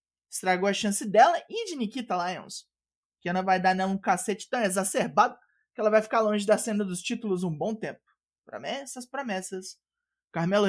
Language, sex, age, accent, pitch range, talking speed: Portuguese, male, 20-39, Brazilian, 195-260 Hz, 185 wpm